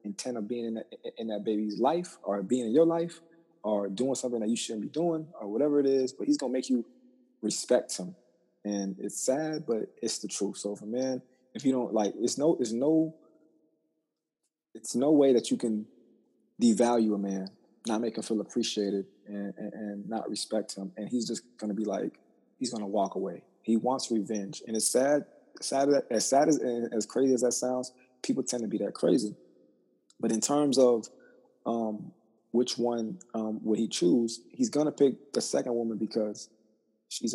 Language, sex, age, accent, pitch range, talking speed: English, male, 20-39, American, 110-135 Hz, 200 wpm